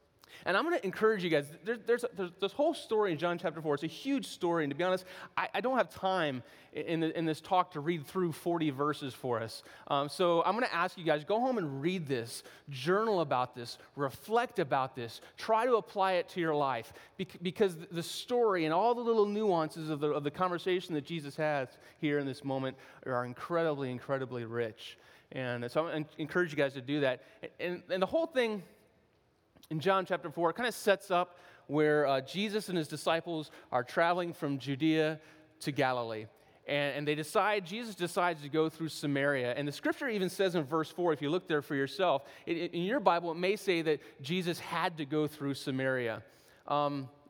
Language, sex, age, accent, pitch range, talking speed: English, male, 30-49, American, 145-190 Hz, 210 wpm